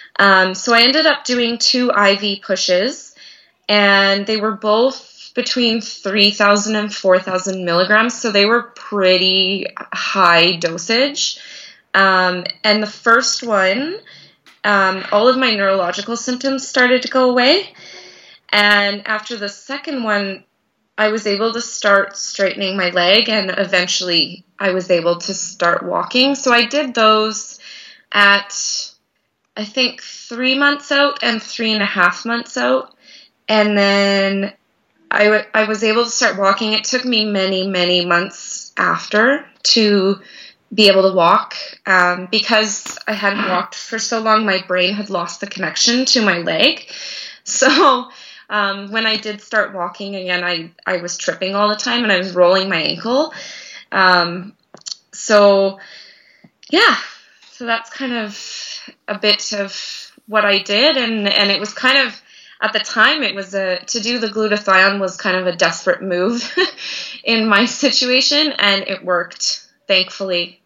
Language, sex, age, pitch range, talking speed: English, female, 20-39, 190-235 Hz, 150 wpm